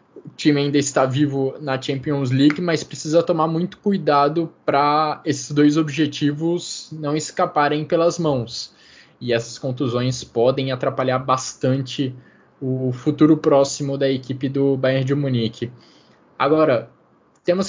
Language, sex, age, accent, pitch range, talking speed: Portuguese, male, 20-39, Brazilian, 135-165 Hz, 130 wpm